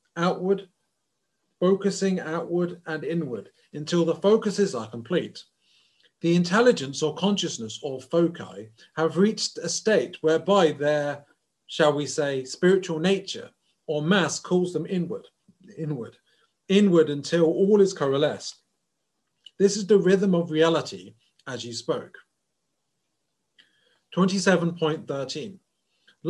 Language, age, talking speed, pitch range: English, 40-59, 110 wpm, 145-190 Hz